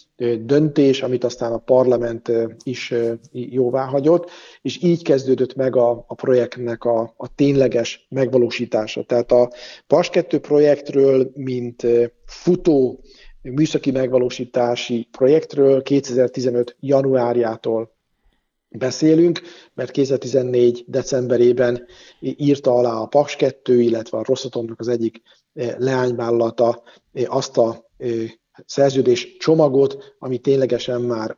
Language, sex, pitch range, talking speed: Hungarian, male, 120-140 Hz, 95 wpm